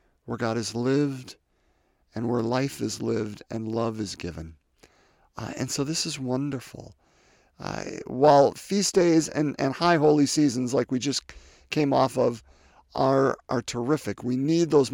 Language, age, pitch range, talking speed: English, 50-69, 105-150 Hz, 160 wpm